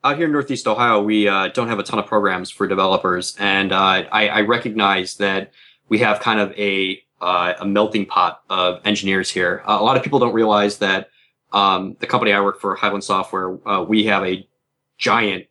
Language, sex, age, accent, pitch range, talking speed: English, male, 20-39, American, 95-110 Hz, 210 wpm